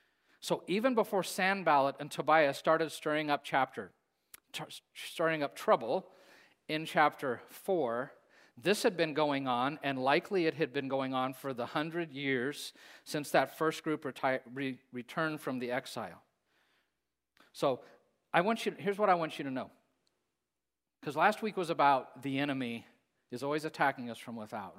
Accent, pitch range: American, 125-160 Hz